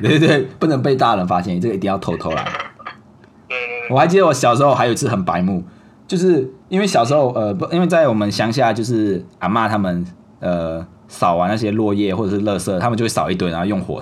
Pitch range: 95-130 Hz